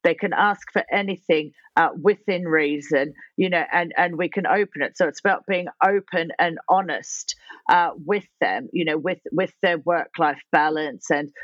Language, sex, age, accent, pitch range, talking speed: English, female, 40-59, British, 155-185 Hz, 180 wpm